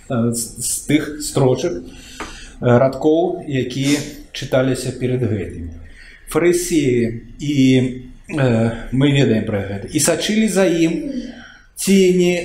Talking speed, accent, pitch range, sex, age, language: 95 wpm, native, 115-175 Hz, male, 50-69, Russian